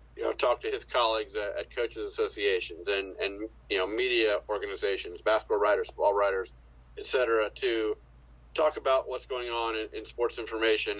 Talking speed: 175 wpm